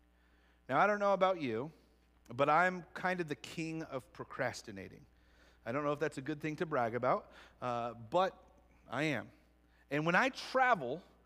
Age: 40-59